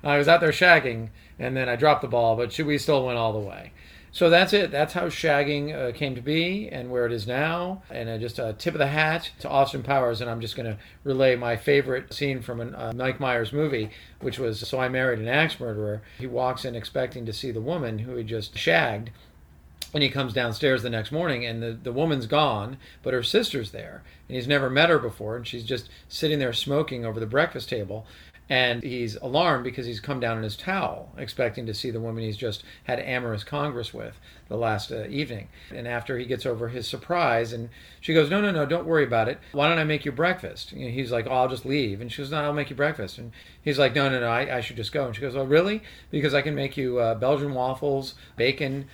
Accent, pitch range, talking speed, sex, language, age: American, 115-145 Hz, 245 wpm, male, English, 40-59